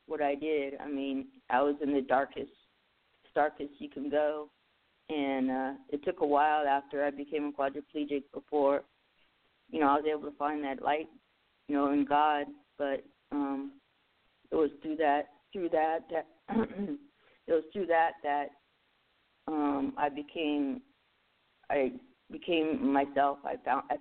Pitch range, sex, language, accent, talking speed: 140-150 Hz, female, English, American, 150 wpm